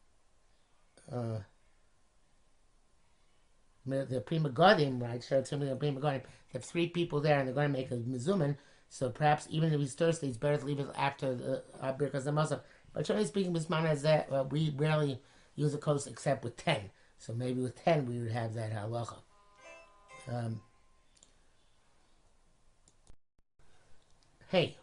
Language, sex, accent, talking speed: English, male, American, 145 wpm